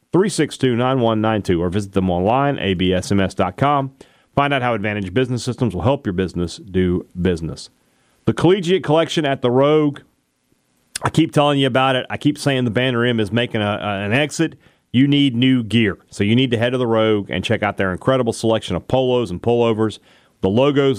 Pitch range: 95-135 Hz